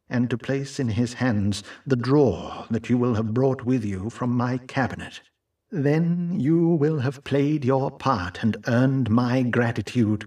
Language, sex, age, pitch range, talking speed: English, male, 60-79, 110-135 Hz, 170 wpm